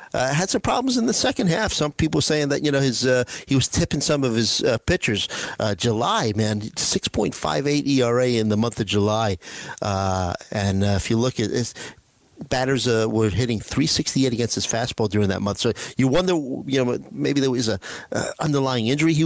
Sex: male